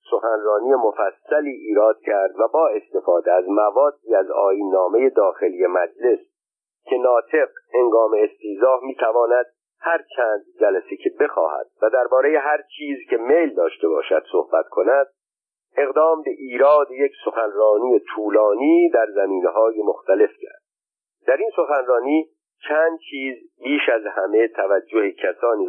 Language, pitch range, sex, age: Persian, 285-460 Hz, male, 50-69